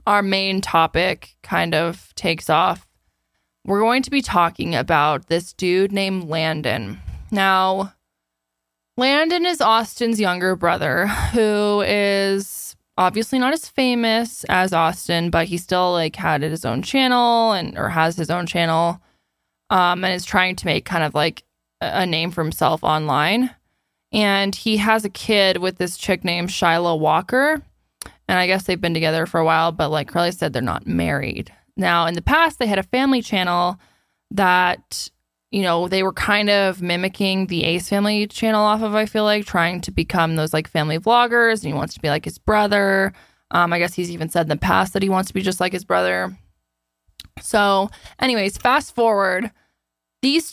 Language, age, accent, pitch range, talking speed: English, 20-39, American, 165-210 Hz, 180 wpm